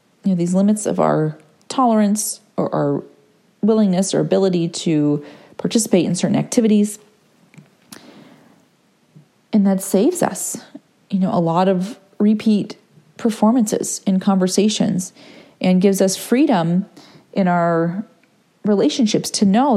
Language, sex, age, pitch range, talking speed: English, female, 30-49, 175-215 Hz, 120 wpm